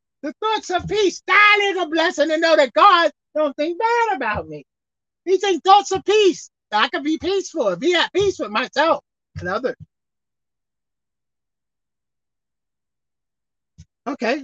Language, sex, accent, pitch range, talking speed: English, male, American, 245-380 Hz, 145 wpm